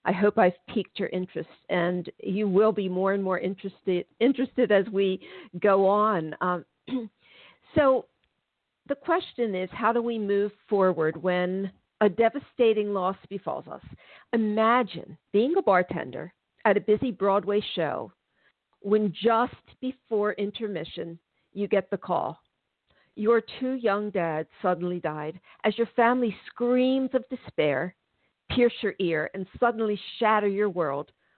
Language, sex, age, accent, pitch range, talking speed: English, female, 50-69, American, 180-230 Hz, 140 wpm